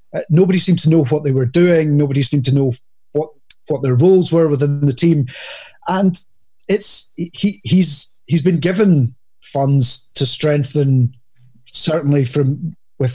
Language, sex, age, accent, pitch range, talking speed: English, male, 30-49, British, 135-160 Hz, 155 wpm